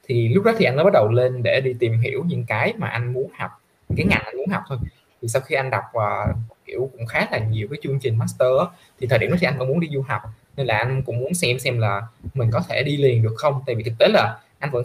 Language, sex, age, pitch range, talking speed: Vietnamese, male, 20-39, 115-145 Hz, 300 wpm